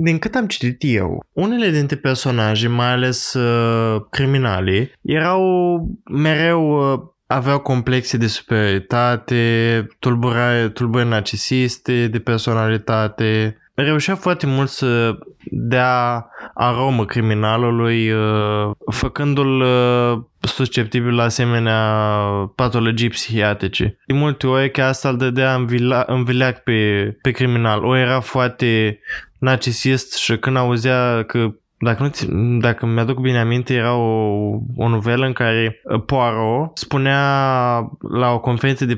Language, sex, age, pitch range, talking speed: Romanian, male, 20-39, 115-135 Hz, 115 wpm